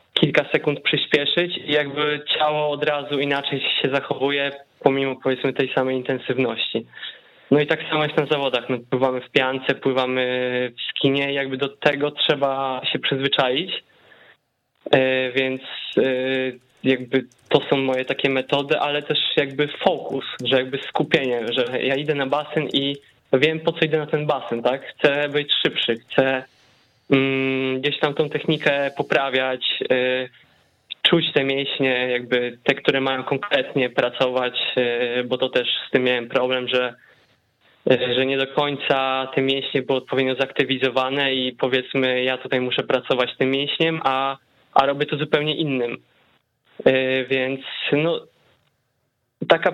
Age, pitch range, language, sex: 20-39, 130-145 Hz, Polish, male